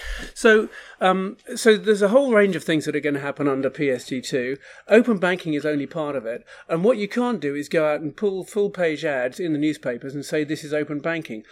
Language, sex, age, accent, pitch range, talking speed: English, male, 40-59, British, 150-210 Hz, 235 wpm